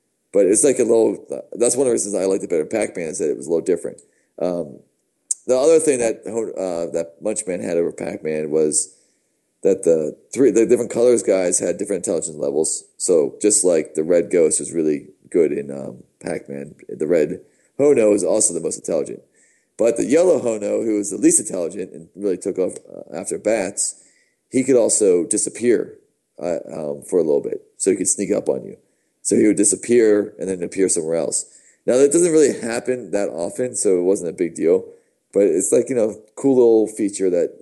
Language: English